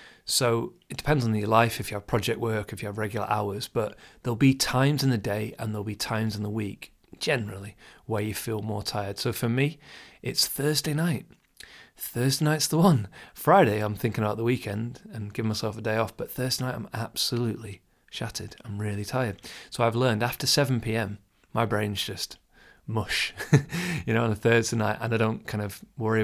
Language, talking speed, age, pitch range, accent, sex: English, 205 wpm, 30-49, 105-120 Hz, British, male